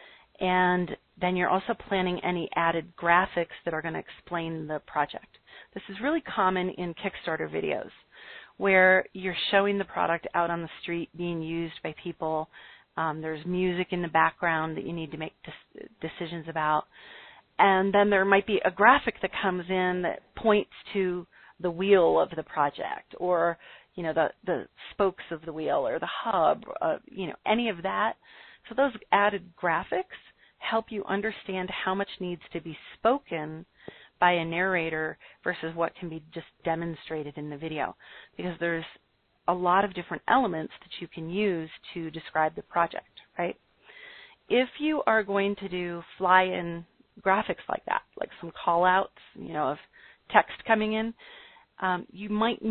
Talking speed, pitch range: 165 wpm, 170-210 Hz